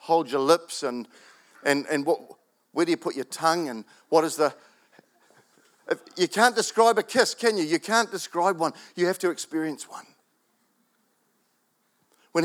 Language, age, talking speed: English, 50-69, 170 wpm